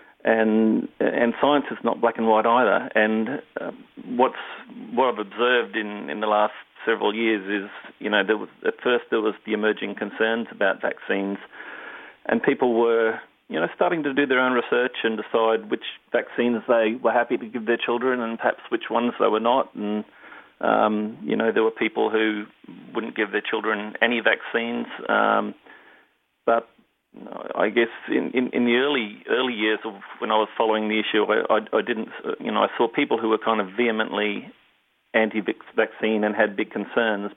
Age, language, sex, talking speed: 40-59, English, male, 185 wpm